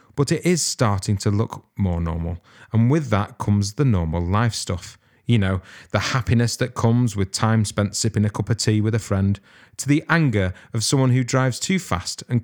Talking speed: 205 wpm